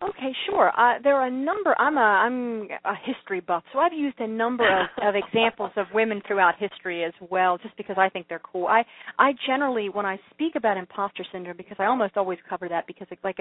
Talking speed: 230 wpm